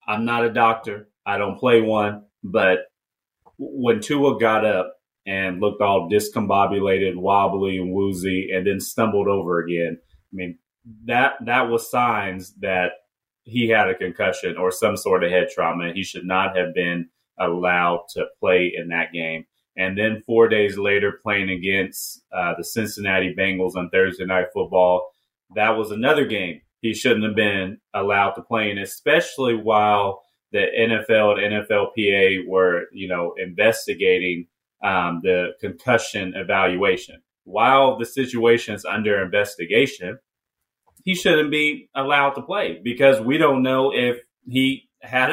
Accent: American